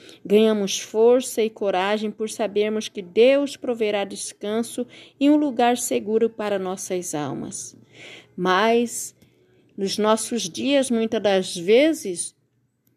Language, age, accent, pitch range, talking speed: Portuguese, 50-69, Brazilian, 195-265 Hz, 110 wpm